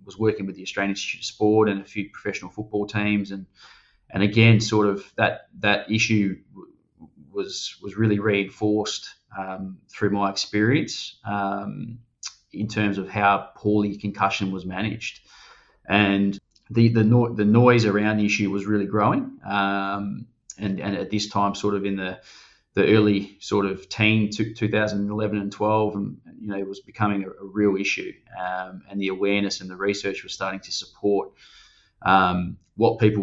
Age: 20-39